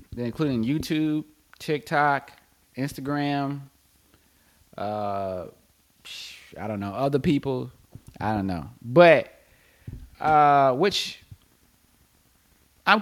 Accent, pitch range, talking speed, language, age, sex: American, 105-145 Hz, 80 wpm, English, 30-49, male